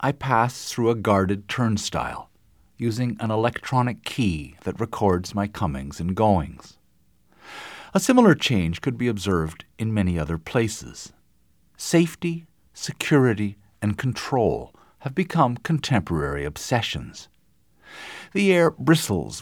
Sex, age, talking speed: male, 50-69, 115 wpm